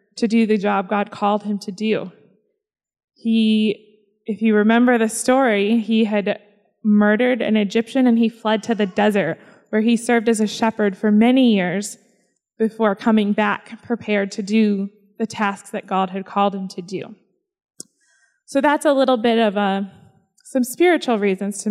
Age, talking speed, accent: 20-39, 170 wpm, American